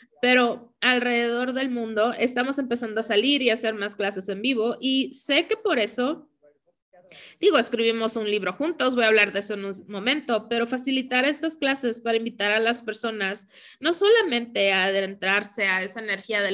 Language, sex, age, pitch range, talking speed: Spanish, female, 20-39, 200-245 Hz, 180 wpm